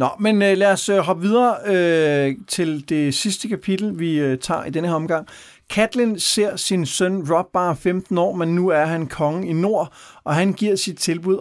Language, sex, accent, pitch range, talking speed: Danish, male, native, 135-185 Hz, 200 wpm